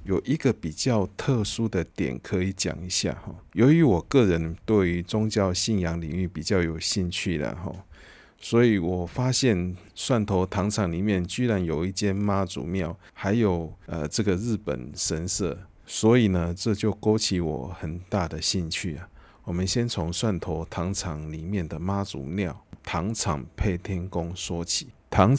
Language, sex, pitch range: Chinese, male, 85-105 Hz